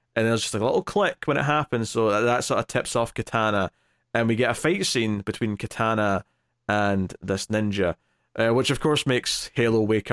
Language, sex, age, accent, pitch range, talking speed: English, male, 20-39, British, 105-125 Hz, 215 wpm